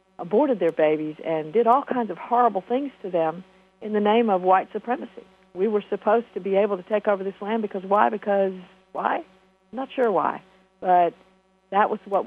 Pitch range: 180-215 Hz